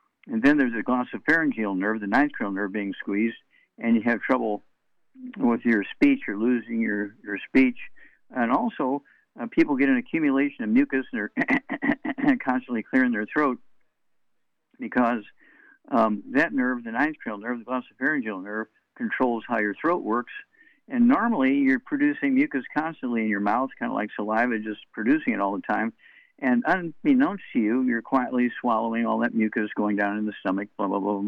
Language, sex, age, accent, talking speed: English, male, 60-79, American, 175 wpm